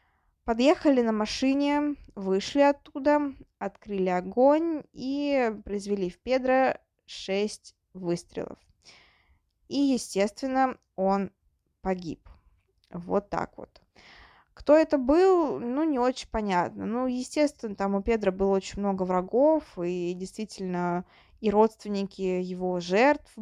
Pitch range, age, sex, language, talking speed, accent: 185-240 Hz, 20-39, female, Russian, 110 wpm, native